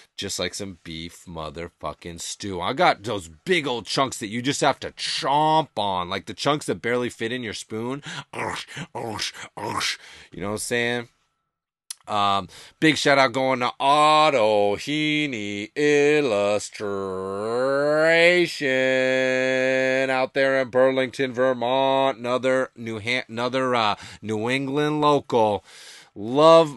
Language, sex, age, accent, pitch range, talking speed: English, male, 30-49, American, 120-150 Hz, 130 wpm